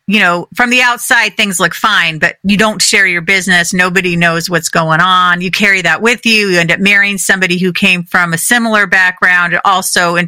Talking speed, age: 215 wpm, 40-59